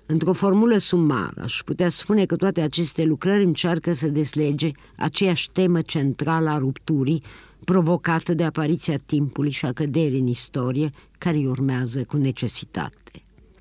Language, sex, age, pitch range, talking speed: Romanian, female, 50-69, 145-175 Hz, 140 wpm